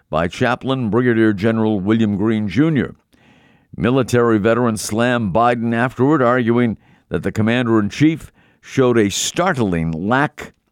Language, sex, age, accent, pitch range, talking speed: English, male, 50-69, American, 100-125 Hz, 110 wpm